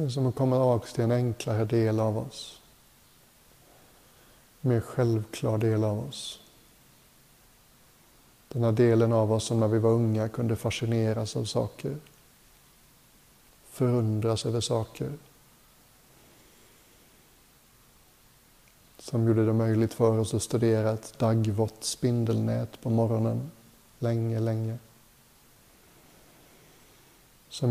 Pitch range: 110-120 Hz